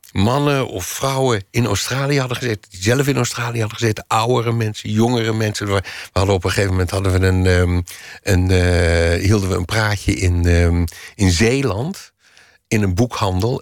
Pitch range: 105-135 Hz